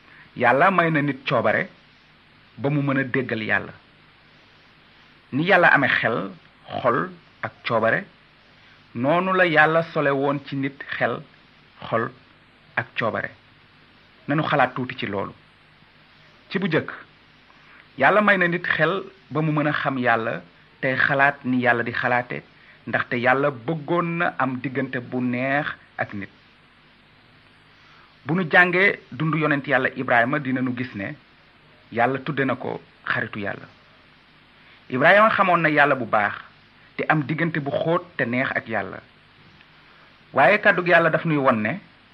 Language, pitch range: Italian, 130-165 Hz